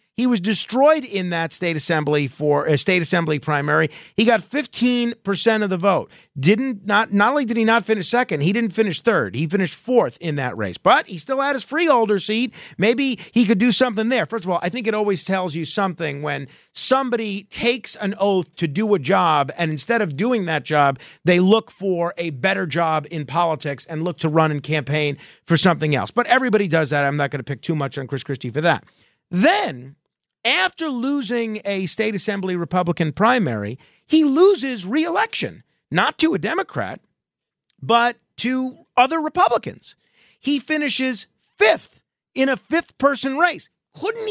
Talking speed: 185 wpm